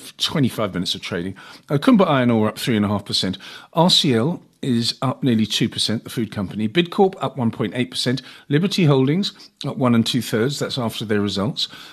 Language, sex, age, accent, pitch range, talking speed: English, male, 50-69, British, 115-150 Hz, 150 wpm